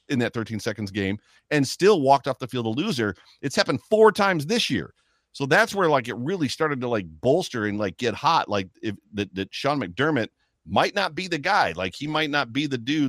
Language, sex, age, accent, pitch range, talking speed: English, male, 40-59, American, 95-130 Hz, 235 wpm